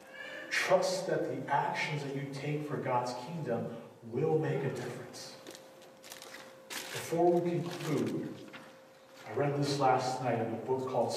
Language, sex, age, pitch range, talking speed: English, male, 40-59, 115-145 Hz, 140 wpm